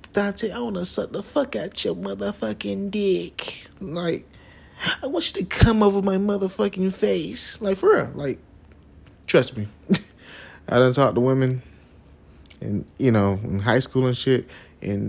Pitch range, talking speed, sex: 95-140 Hz, 165 wpm, male